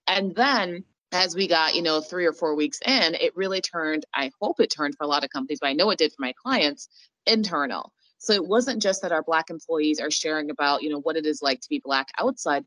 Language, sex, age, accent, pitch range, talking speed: English, female, 30-49, American, 150-195 Hz, 255 wpm